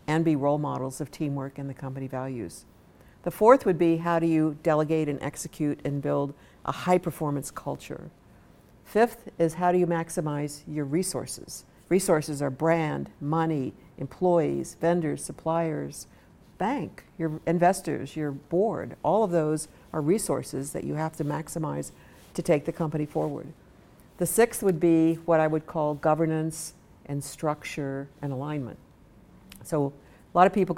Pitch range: 145-165 Hz